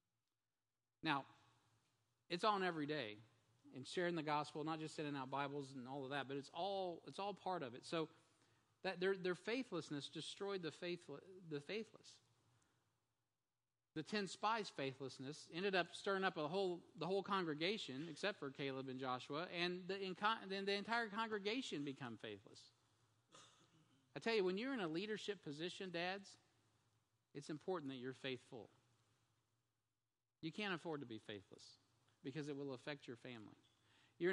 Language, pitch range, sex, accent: English, 125-175 Hz, male, American